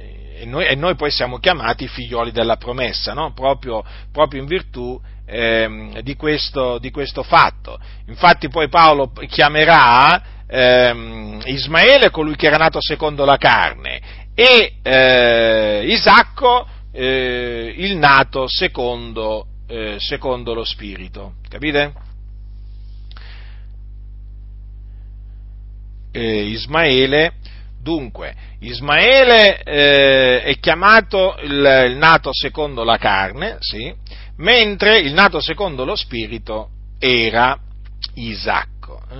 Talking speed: 95 wpm